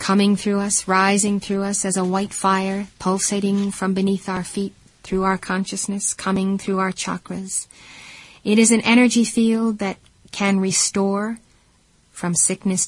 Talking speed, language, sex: 150 wpm, English, female